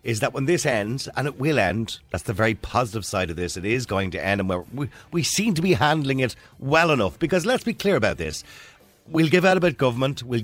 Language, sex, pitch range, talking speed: English, male, 100-130 Hz, 255 wpm